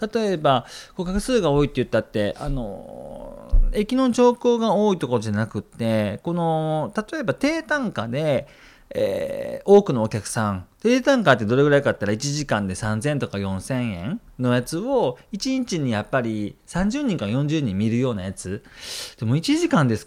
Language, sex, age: Japanese, male, 40-59